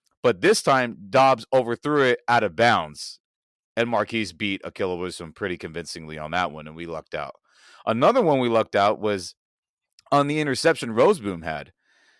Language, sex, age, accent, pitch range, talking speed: English, male, 30-49, American, 95-140 Hz, 165 wpm